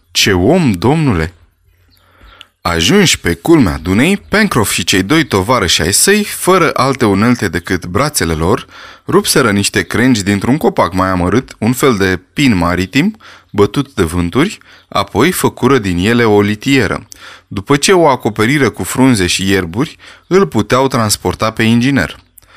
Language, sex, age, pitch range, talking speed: Romanian, male, 20-39, 95-140 Hz, 145 wpm